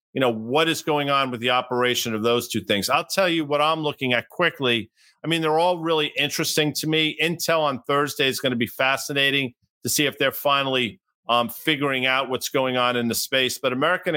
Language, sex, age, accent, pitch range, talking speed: English, male, 50-69, American, 125-155 Hz, 225 wpm